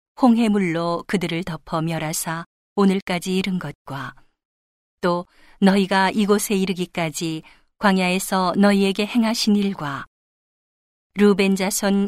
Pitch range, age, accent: 175-210 Hz, 40-59, native